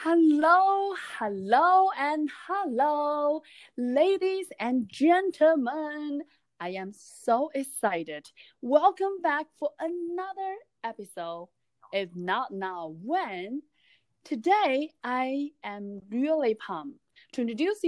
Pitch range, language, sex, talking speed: 225-330 Hz, English, female, 90 wpm